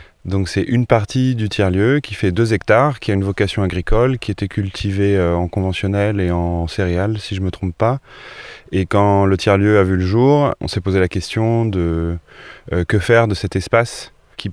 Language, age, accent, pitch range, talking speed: French, 20-39, French, 90-110 Hz, 200 wpm